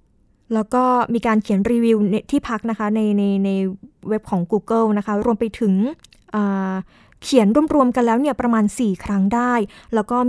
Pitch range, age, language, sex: 210-255 Hz, 20-39, Thai, female